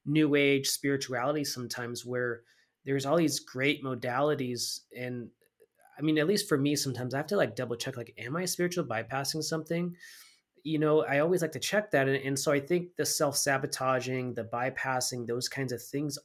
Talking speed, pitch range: 190 wpm, 125-155 Hz